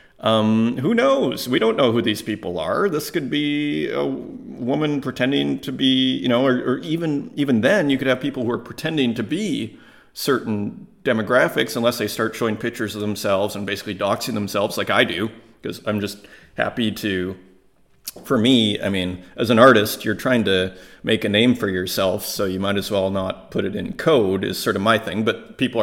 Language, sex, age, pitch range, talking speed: English, male, 30-49, 100-130 Hz, 200 wpm